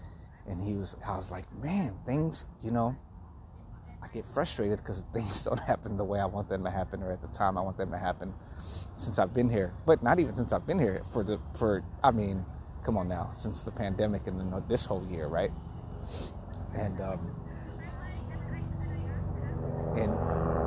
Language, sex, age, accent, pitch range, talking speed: English, male, 30-49, American, 85-110 Hz, 185 wpm